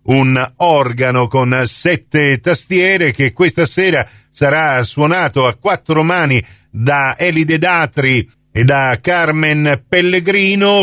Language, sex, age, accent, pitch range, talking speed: Italian, male, 50-69, native, 125-165 Hz, 110 wpm